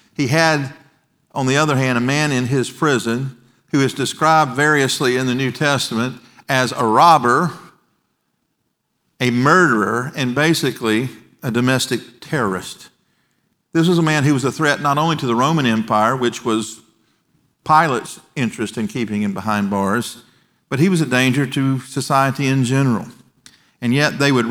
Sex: male